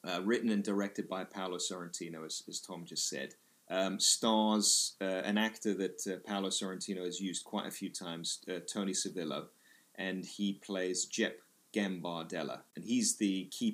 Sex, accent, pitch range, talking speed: male, British, 95-105 Hz, 170 wpm